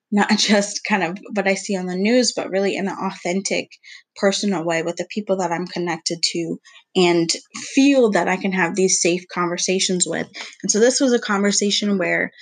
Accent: American